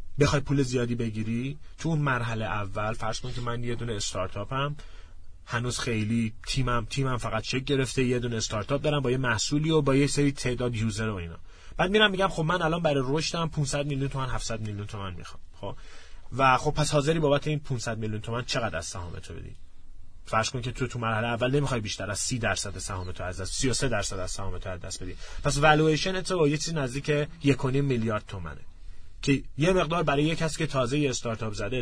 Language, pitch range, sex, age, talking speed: Persian, 105-145 Hz, male, 30-49, 190 wpm